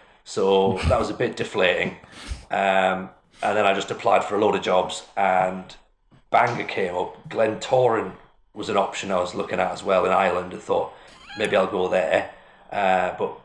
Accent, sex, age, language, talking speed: British, male, 40-59, English, 185 wpm